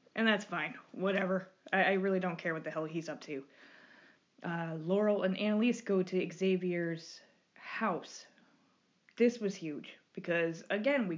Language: English